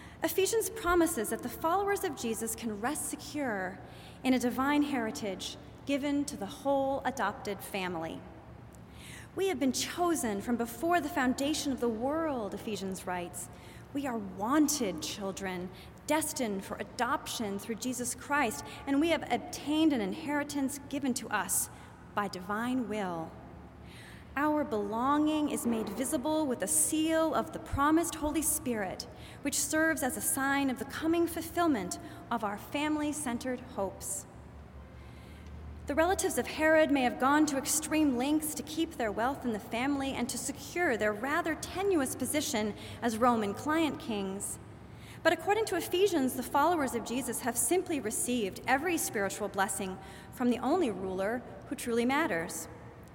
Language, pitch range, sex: English, 220-305 Hz, female